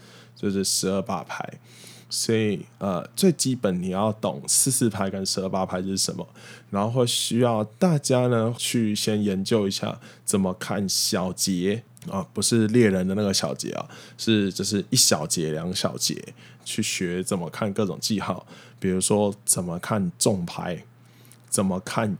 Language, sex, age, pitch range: Chinese, male, 20-39, 95-120 Hz